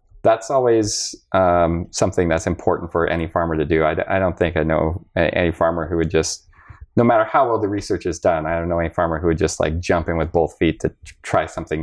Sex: male